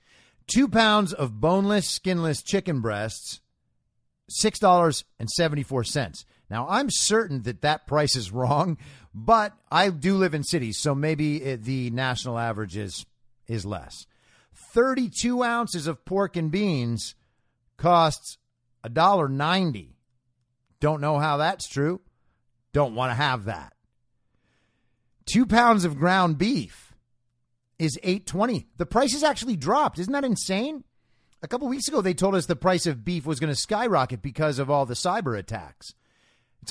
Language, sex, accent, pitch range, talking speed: English, male, American, 120-185 Hz, 140 wpm